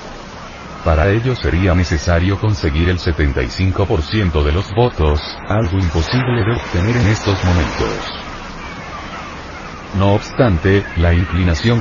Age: 40-59